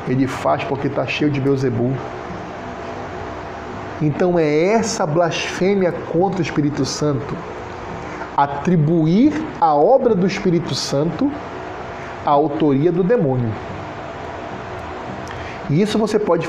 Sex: male